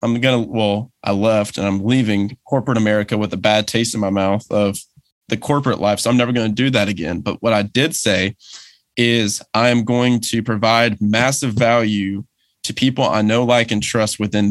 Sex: male